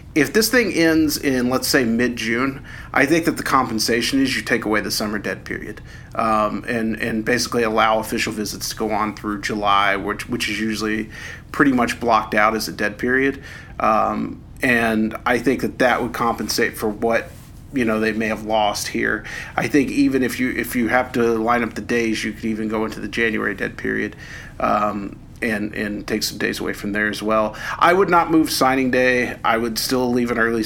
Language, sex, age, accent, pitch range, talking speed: English, male, 40-59, American, 110-125 Hz, 210 wpm